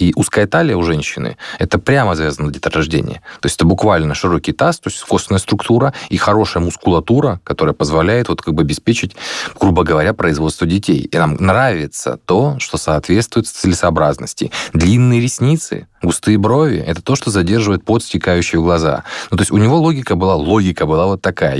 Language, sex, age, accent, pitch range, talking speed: Russian, male, 20-39, native, 85-110 Hz, 170 wpm